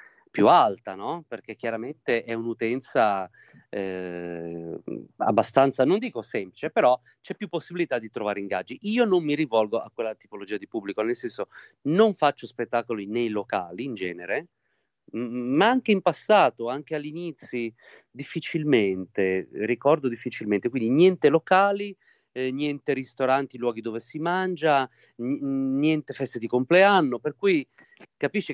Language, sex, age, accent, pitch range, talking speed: Italian, male, 40-59, native, 115-155 Hz, 130 wpm